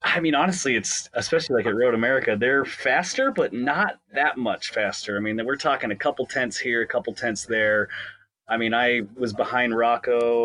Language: English